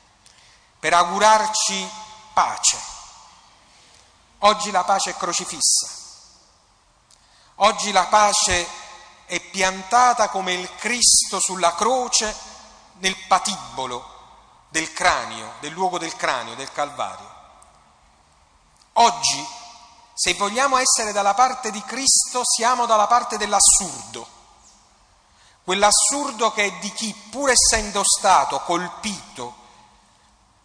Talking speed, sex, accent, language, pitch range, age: 95 wpm, male, native, Italian, 165-215 Hz, 40-59